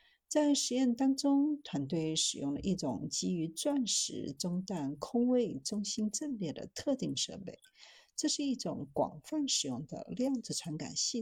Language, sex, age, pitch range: Chinese, female, 50-69, 165-260 Hz